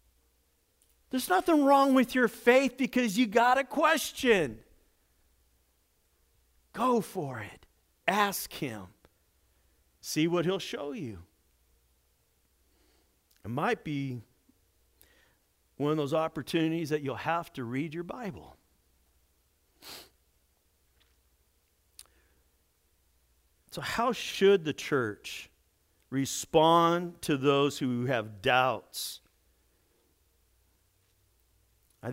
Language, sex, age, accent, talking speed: English, male, 50-69, American, 90 wpm